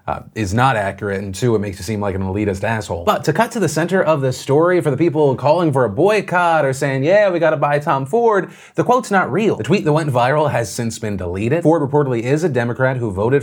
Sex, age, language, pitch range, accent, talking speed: male, 30-49, English, 115-155 Hz, American, 265 wpm